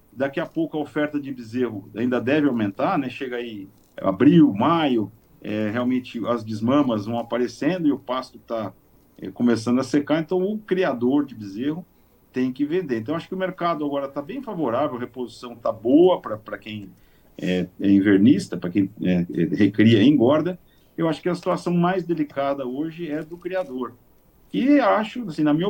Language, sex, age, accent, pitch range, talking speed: Portuguese, male, 50-69, Brazilian, 120-165 Hz, 170 wpm